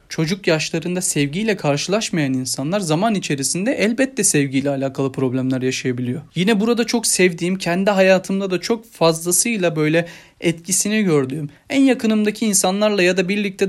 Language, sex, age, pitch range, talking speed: Turkish, male, 30-49, 140-190 Hz, 130 wpm